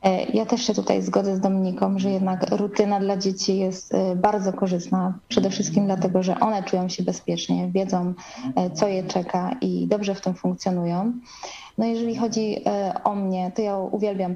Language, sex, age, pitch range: Polish, female, 20-39, 180-210 Hz